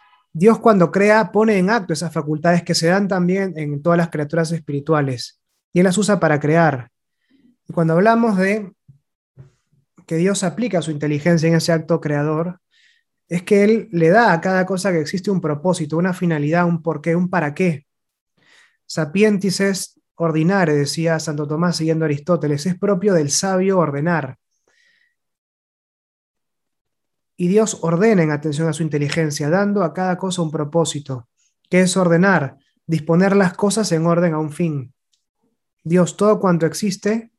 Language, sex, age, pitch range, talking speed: Spanish, male, 20-39, 155-190 Hz, 155 wpm